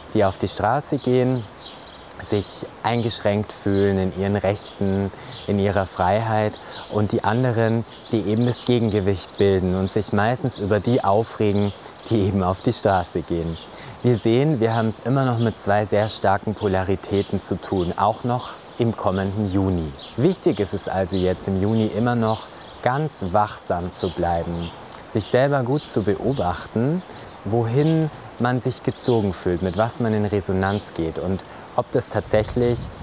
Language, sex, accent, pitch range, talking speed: German, male, German, 95-120 Hz, 155 wpm